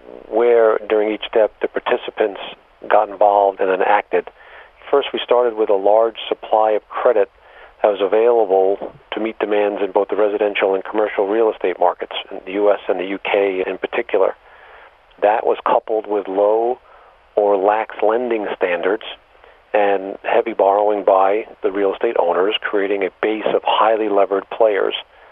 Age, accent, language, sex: 50-69, American, English, male